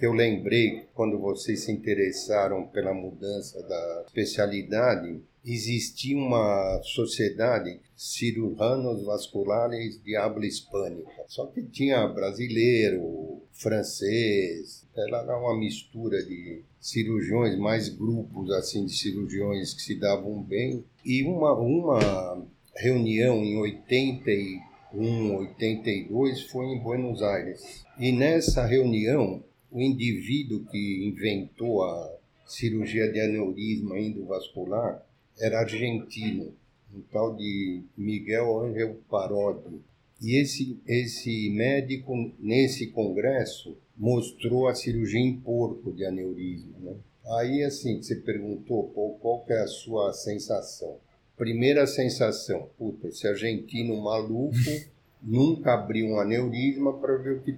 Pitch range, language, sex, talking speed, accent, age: 105-125 Hz, Portuguese, male, 110 wpm, Brazilian, 50-69